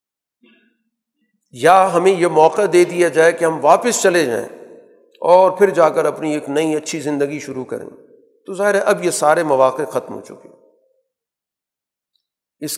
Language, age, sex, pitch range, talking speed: Urdu, 50-69, male, 135-215 Hz, 160 wpm